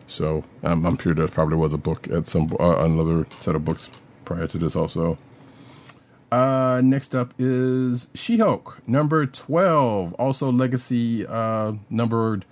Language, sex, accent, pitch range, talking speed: English, male, American, 95-130 Hz, 150 wpm